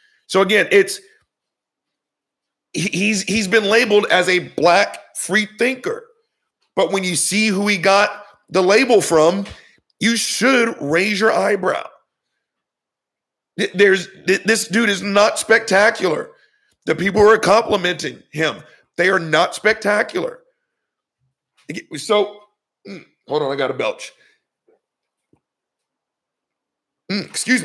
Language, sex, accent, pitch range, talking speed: English, male, American, 175-225 Hz, 110 wpm